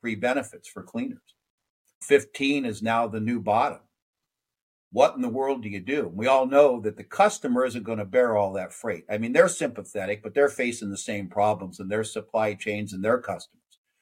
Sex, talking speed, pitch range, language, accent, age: male, 200 wpm, 105-140 Hz, English, American, 50-69